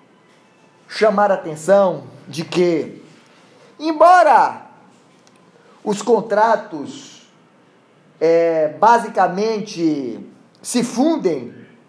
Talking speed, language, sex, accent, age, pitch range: 55 wpm, Portuguese, male, Brazilian, 20-39, 170-235 Hz